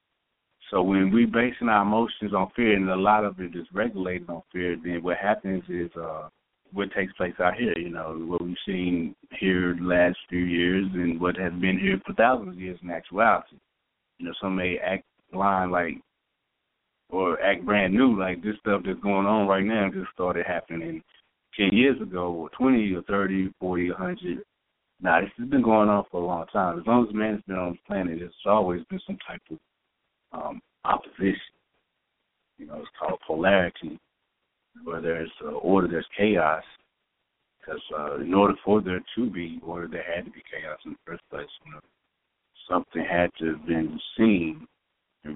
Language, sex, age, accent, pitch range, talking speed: English, male, 30-49, American, 85-100 Hz, 190 wpm